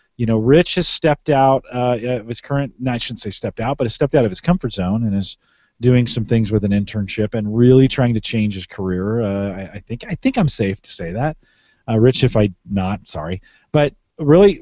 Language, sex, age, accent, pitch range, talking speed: English, male, 30-49, American, 105-135 Hz, 225 wpm